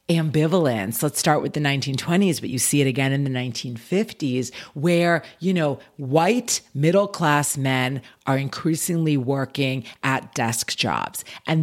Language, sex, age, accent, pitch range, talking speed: English, female, 40-59, American, 135-180 Hz, 140 wpm